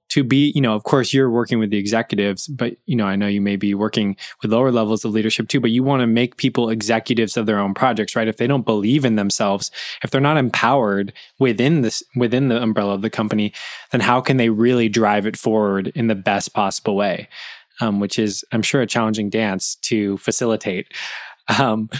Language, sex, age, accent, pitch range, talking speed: English, male, 20-39, American, 110-135 Hz, 220 wpm